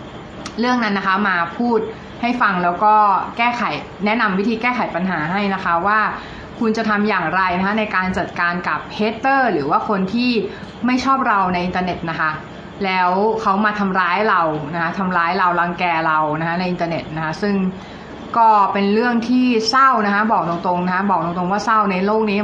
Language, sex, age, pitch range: Thai, female, 20-39, 180-230 Hz